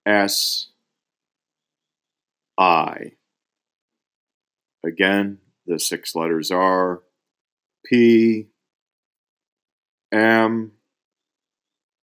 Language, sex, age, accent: English, male, 50-69, American